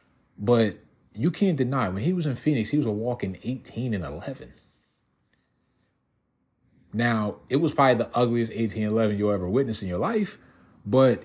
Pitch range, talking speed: 100-135 Hz, 170 wpm